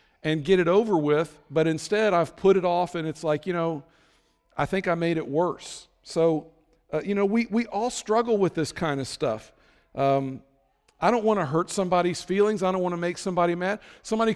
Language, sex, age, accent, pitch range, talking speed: English, male, 50-69, American, 145-195 Hz, 215 wpm